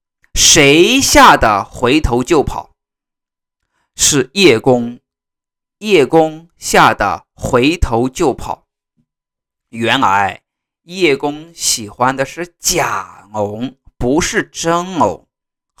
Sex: male